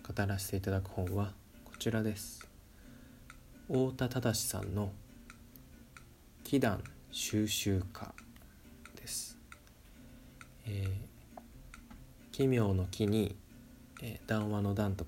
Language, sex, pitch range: Japanese, male, 95-120 Hz